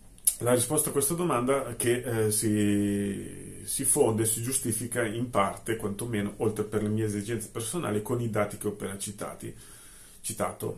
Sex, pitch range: male, 105-120 Hz